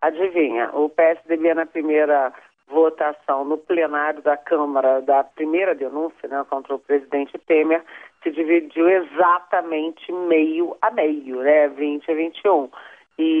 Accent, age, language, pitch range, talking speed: Brazilian, 40-59, Portuguese, 145-170 Hz, 130 wpm